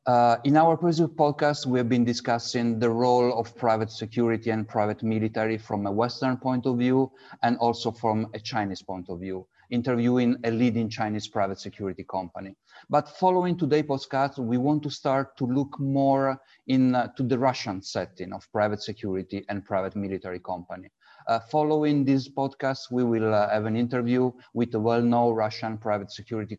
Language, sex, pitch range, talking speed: English, male, 110-135 Hz, 175 wpm